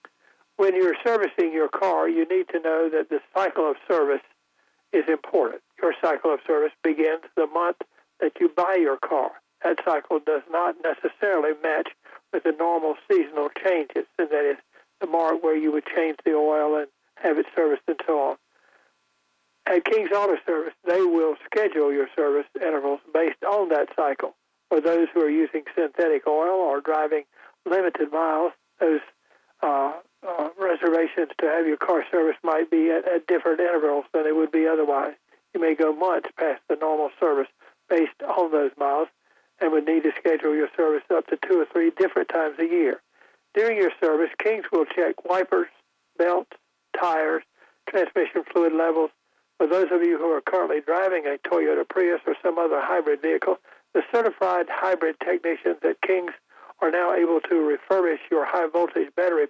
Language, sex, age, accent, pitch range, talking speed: English, male, 60-79, American, 155-185 Hz, 175 wpm